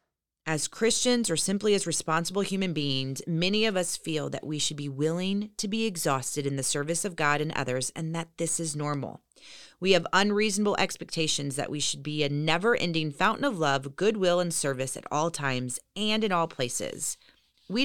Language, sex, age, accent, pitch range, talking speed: English, female, 30-49, American, 145-195 Hz, 190 wpm